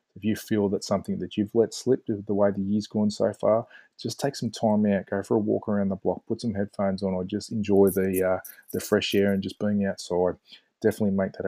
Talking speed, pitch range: 245 wpm, 95-105 Hz